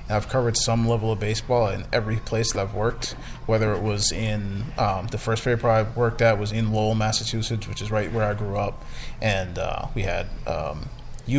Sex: male